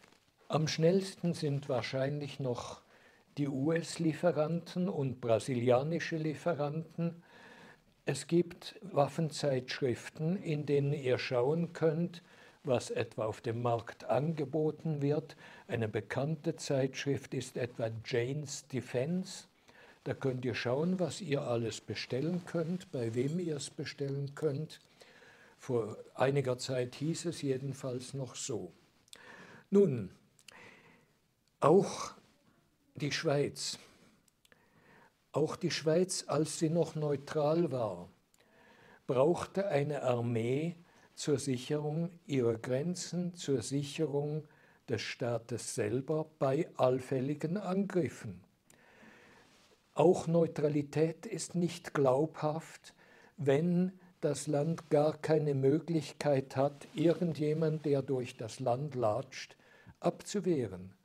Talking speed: 95 wpm